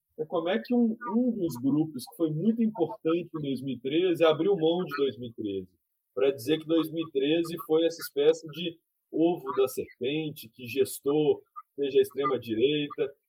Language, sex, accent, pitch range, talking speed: Portuguese, male, Brazilian, 140-220 Hz, 150 wpm